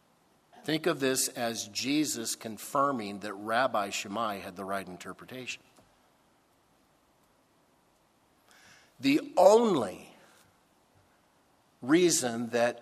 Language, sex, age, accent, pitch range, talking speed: English, male, 50-69, American, 110-140 Hz, 80 wpm